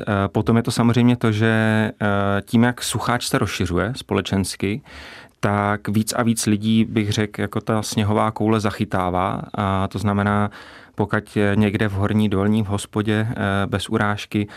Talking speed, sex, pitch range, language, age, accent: 150 wpm, male, 95-110 Hz, Czech, 30-49, native